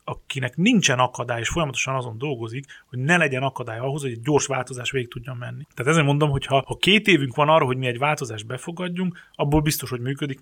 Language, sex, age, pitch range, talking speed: Hungarian, male, 30-49, 130-160 Hz, 220 wpm